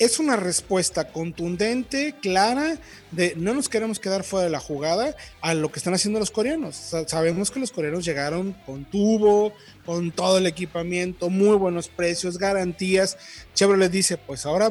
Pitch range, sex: 165-225 Hz, male